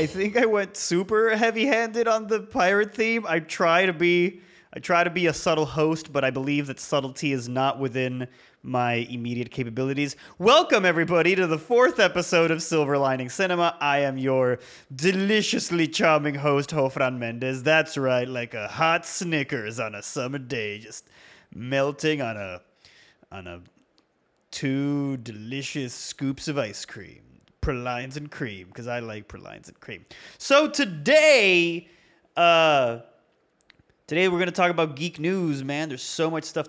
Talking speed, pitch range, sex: 155 wpm, 135-180 Hz, male